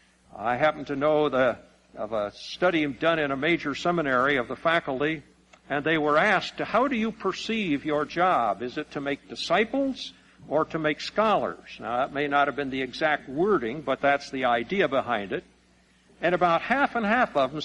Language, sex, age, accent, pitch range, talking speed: English, male, 60-79, American, 140-180 Hz, 195 wpm